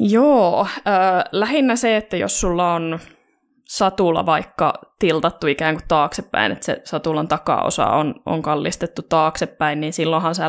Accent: native